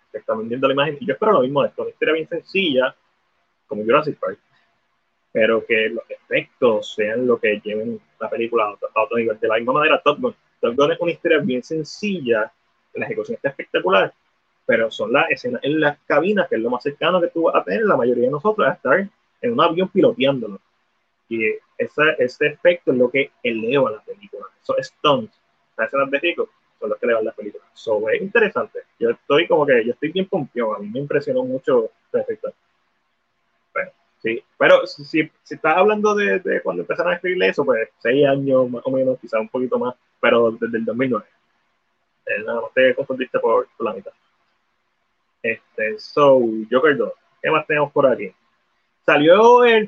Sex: male